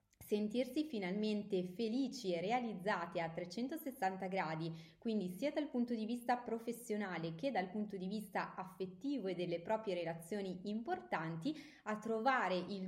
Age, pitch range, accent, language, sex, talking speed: 20-39, 185-235 Hz, native, Italian, female, 135 wpm